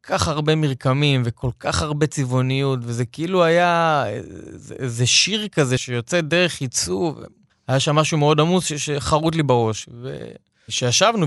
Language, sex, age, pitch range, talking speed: Hebrew, male, 20-39, 125-150 Hz, 145 wpm